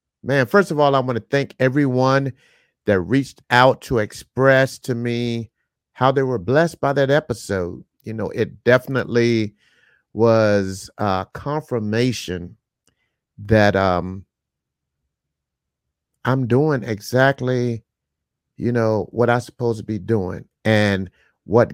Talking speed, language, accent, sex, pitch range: 125 wpm, English, American, male, 95-120 Hz